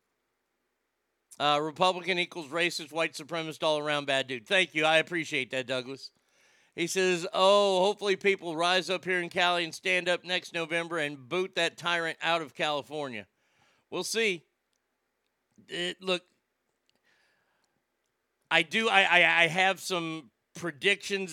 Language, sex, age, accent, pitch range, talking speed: English, male, 50-69, American, 160-190 Hz, 140 wpm